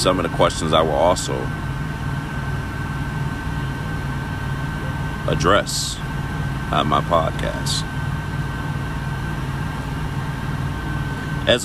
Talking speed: 60 wpm